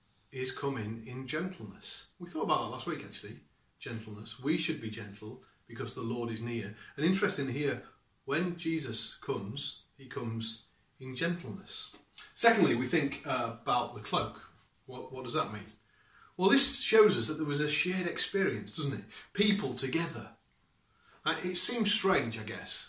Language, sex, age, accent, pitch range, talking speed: English, male, 30-49, British, 115-155 Hz, 165 wpm